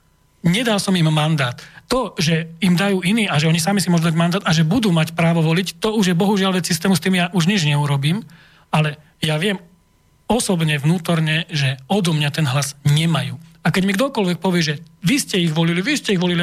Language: Slovak